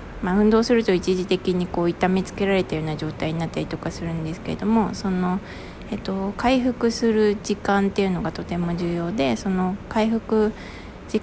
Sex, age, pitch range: female, 20-39, 170-220 Hz